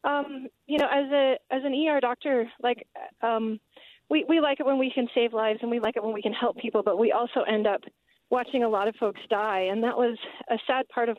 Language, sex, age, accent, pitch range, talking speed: English, female, 30-49, American, 200-245 Hz, 250 wpm